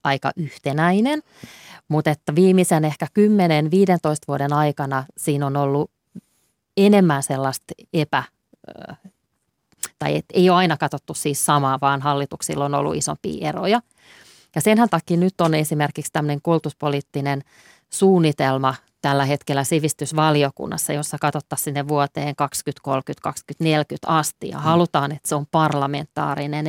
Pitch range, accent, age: 145-165 Hz, native, 30-49